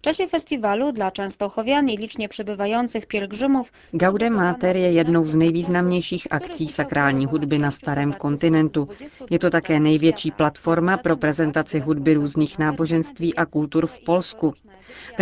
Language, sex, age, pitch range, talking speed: Czech, female, 30-49, 150-175 Hz, 140 wpm